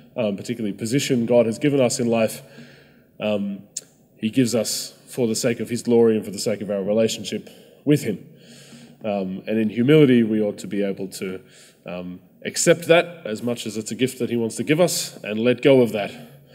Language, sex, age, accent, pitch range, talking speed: English, male, 20-39, Australian, 105-130 Hz, 210 wpm